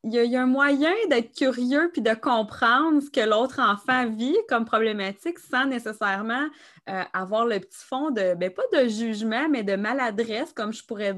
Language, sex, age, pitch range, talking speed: French, female, 20-39, 180-240 Hz, 190 wpm